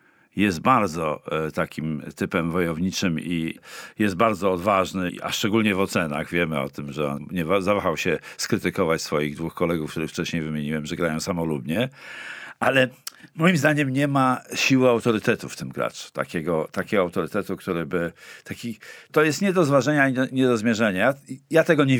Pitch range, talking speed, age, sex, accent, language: 95-125 Hz, 160 wpm, 50-69, male, native, Polish